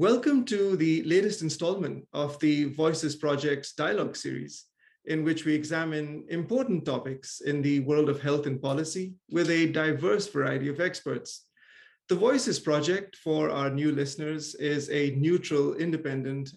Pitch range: 140-175 Hz